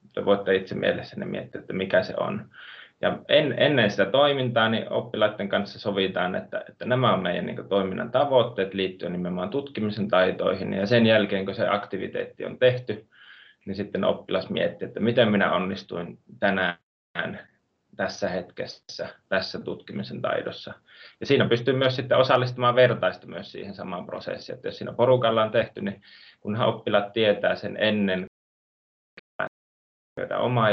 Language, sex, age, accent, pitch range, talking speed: Finnish, male, 30-49, native, 95-115 Hz, 145 wpm